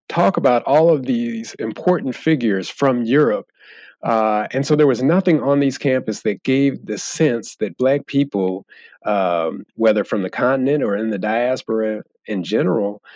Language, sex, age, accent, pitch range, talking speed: English, male, 40-59, American, 100-135 Hz, 165 wpm